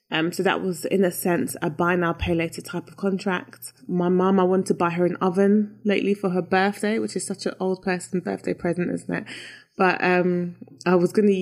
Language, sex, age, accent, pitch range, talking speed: English, female, 20-39, British, 175-210 Hz, 230 wpm